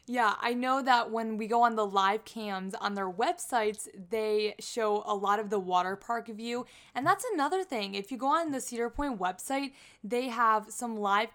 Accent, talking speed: American, 205 wpm